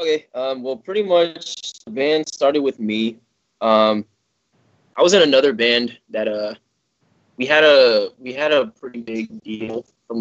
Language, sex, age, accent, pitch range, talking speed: English, male, 20-39, American, 110-125 Hz, 165 wpm